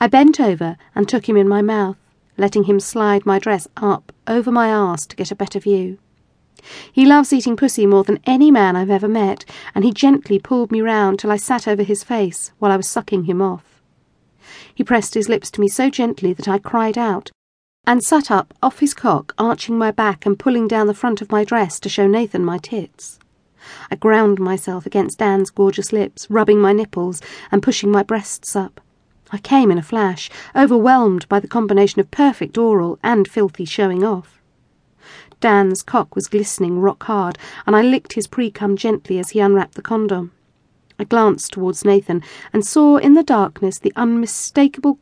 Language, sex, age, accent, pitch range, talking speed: English, female, 40-59, British, 195-230 Hz, 190 wpm